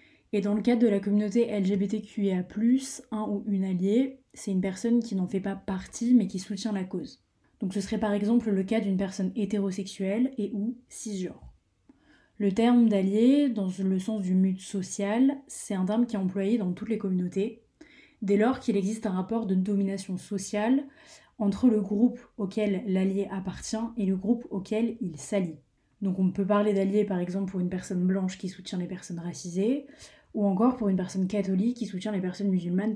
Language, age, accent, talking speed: French, 20-39, French, 190 wpm